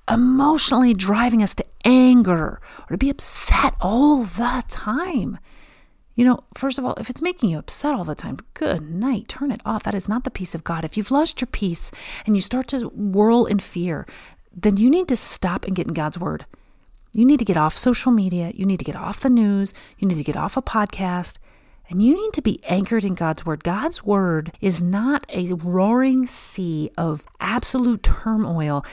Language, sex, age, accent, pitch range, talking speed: English, female, 40-59, American, 165-235 Hz, 205 wpm